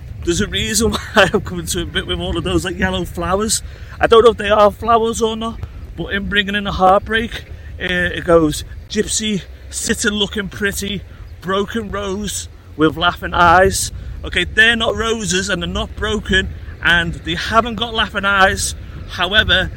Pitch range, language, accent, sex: 140-225 Hz, English, British, male